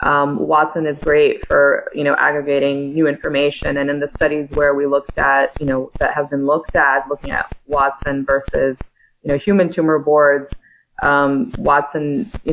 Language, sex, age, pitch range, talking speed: English, female, 20-39, 140-155 Hz, 175 wpm